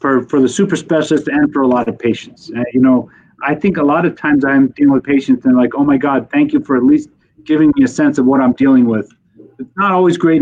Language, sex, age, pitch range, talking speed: English, male, 40-59, 125-160 Hz, 270 wpm